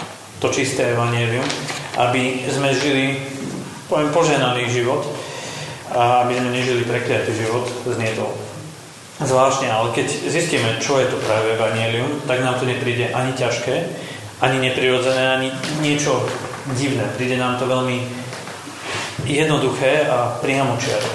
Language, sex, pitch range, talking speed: Slovak, male, 120-145 Hz, 125 wpm